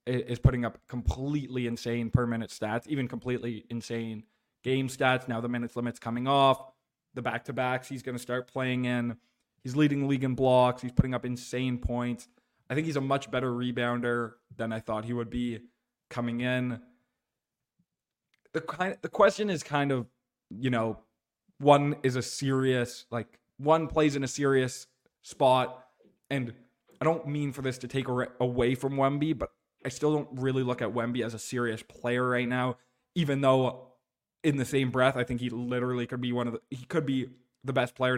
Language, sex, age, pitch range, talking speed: English, male, 20-39, 120-135 Hz, 190 wpm